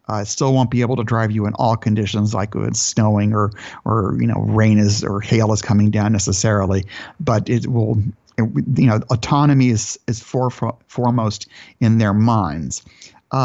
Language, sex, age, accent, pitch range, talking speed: English, male, 50-69, American, 110-130 Hz, 185 wpm